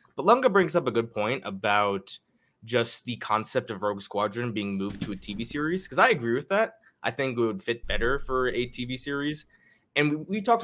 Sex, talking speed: male, 220 wpm